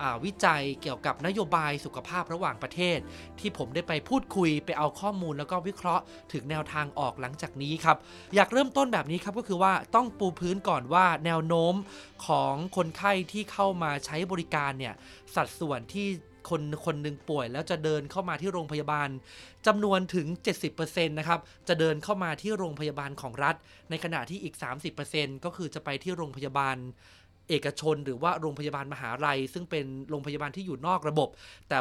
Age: 20-39